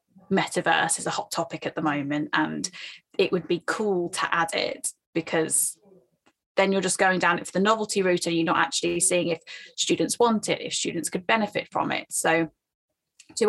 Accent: British